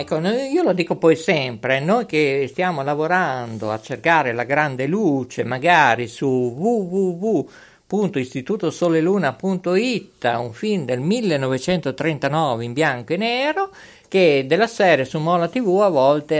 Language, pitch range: Italian, 140-220 Hz